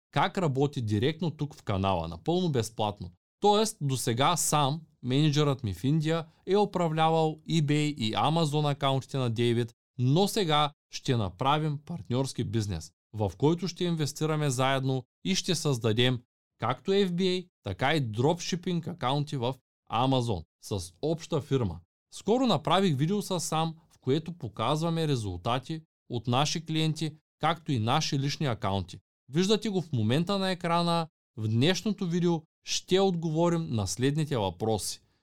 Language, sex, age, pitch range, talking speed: Bulgarian, male, 20-39, 120-170 Hz, 135 wpm